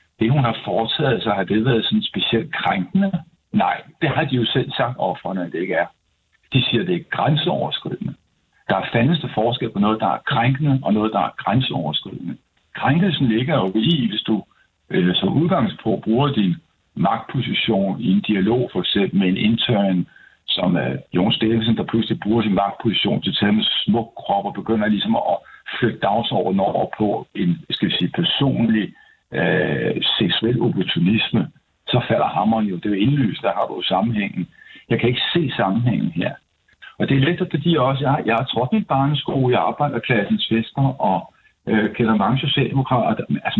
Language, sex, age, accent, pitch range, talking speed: Danish, male, 60-79, native, 115-160 Hz, 180 wpm